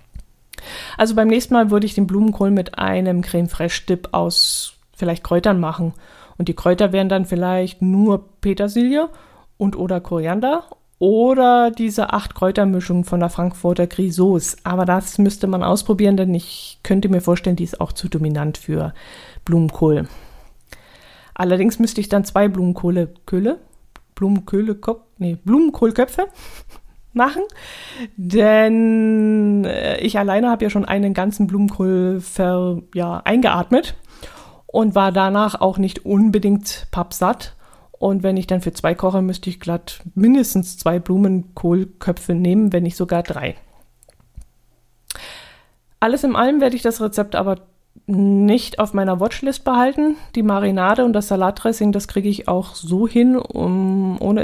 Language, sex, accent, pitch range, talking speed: German, female, German, 180-215 Hz, 135 wpm